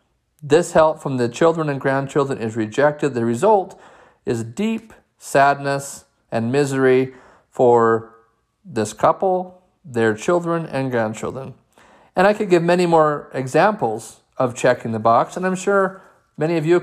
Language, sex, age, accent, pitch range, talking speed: English, male, 40-59, American, 120-165 Hz, 145 wpm